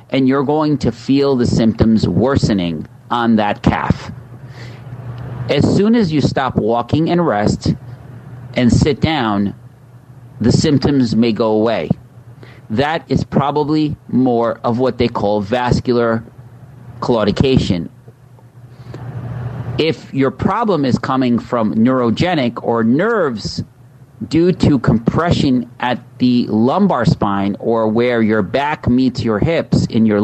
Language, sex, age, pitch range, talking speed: English, male, 40-59, 115-135 Hz, 125 wpm